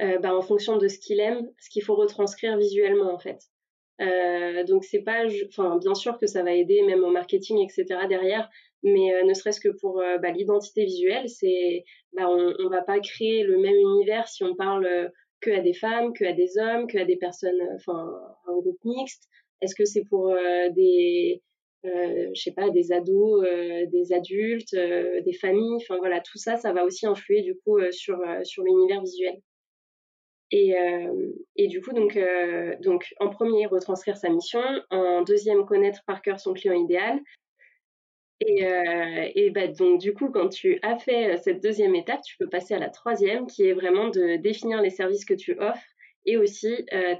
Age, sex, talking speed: 20-39, female, 205 wpm